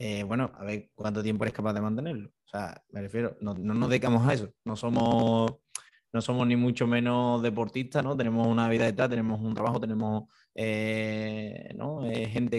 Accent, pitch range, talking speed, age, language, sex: Spanish, 110-125 Hz, 200 wpm, 20-39, Spanish, male